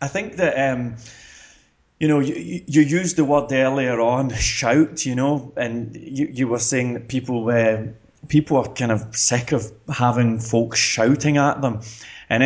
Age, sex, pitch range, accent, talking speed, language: 20-39, male, 120-150 Hz, British, 170 wpm, English